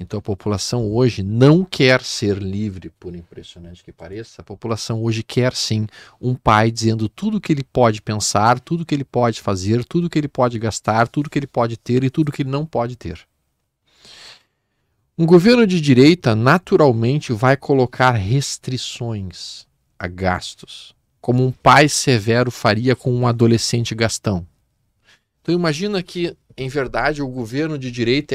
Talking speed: 170 wpm